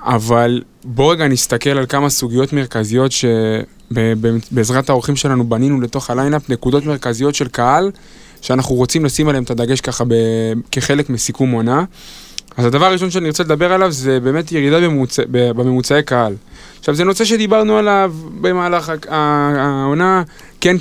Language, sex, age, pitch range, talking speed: Hebrew, male, 20-39, 125-160 Hz, 145 wpm